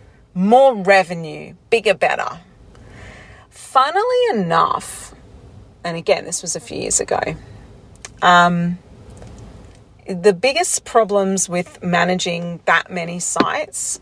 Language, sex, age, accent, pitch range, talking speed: English, female, 40-59, Australian, 155-205 Hz, 100 wpm